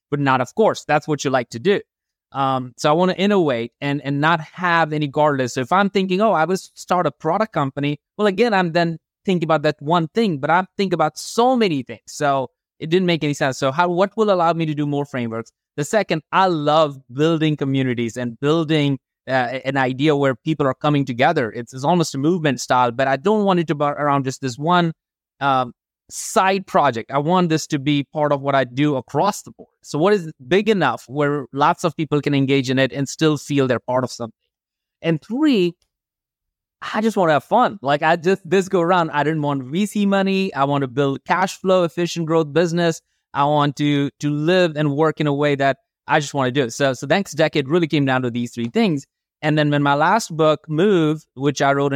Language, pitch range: English, 135-175 Hz